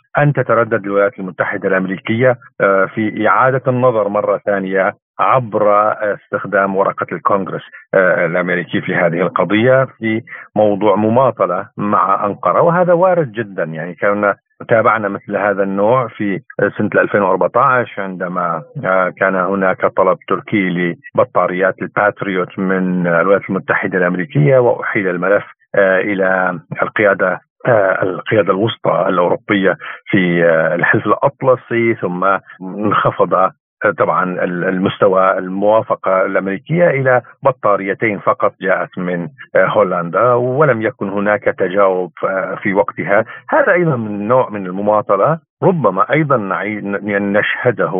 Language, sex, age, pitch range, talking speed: Arabic, male, 50-69, 95-125 Hz, 105 wpm